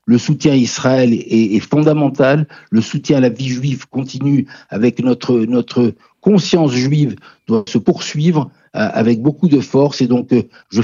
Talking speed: 170 wpm